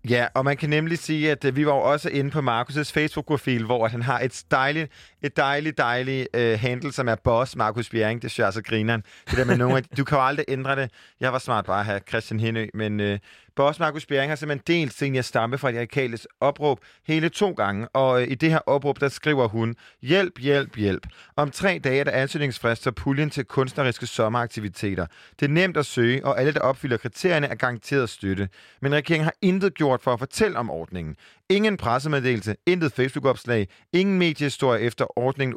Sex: male